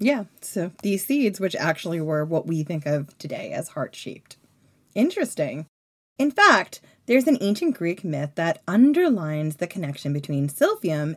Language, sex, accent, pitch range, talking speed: English, female, American, 155-225 Hz, 150 wpm